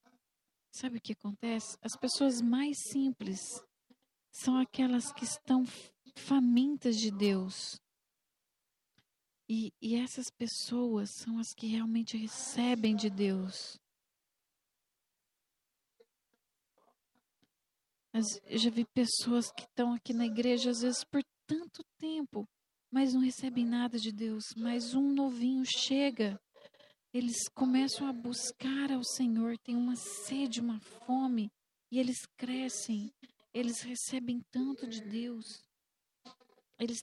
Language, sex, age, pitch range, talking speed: English, female, 40-59, 225-255 Hz, 115 wpm